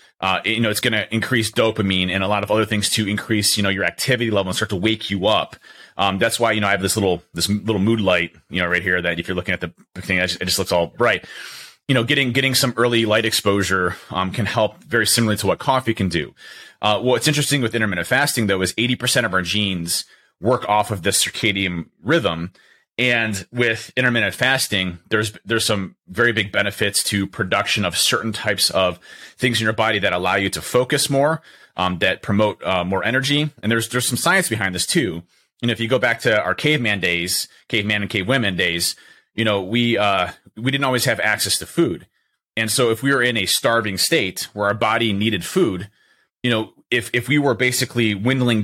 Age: 30-49